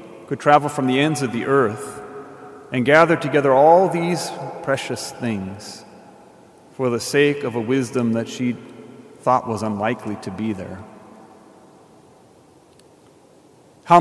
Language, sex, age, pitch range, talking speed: English, male, 40-59, 110-135 Hz, 125 wpm